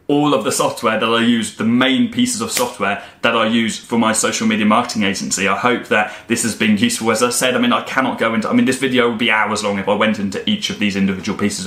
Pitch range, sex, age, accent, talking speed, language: 105-135 Hz, male, 20-39, British, 280 wpm, English